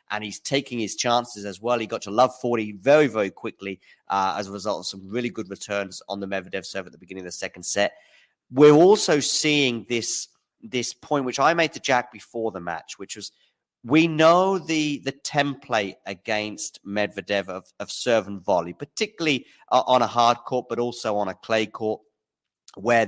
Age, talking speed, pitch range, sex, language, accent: 30-49, 200 wpm, 100-125 Hz, male, English, British